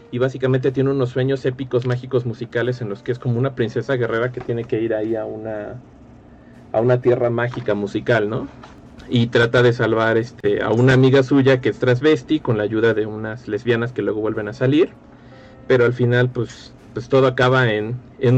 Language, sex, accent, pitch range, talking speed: Spanish, male, Mexican, 115-135 Hz, 200 wpm